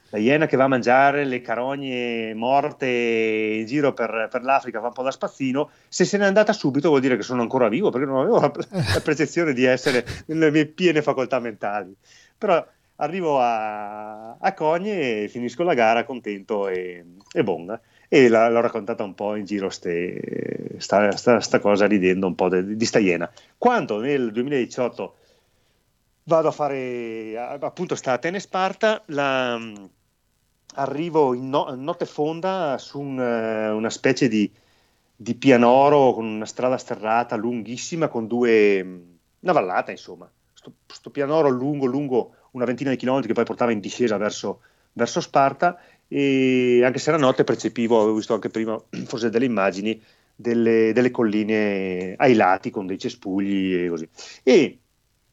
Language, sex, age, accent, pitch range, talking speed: Italian, male, 30-49, native, 110-140 Hz, 165 wpm